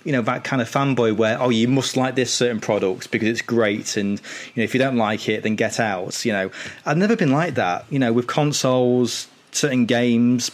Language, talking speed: English, 235 wpm